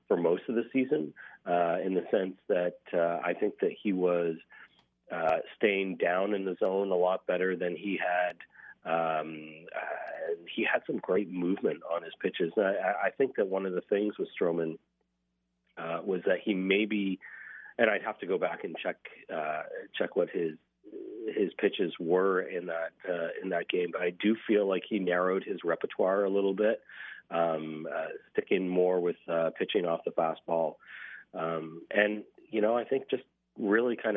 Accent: American